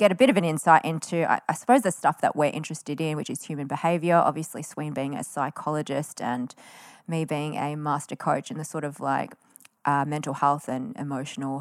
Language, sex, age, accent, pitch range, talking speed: English, female, 20-39, Australian, 150-195 Hz, 205 wpm